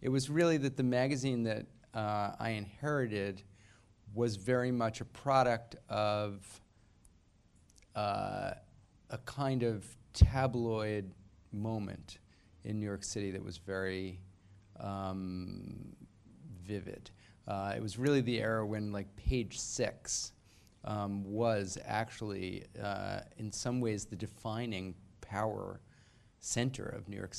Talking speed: 120 wpm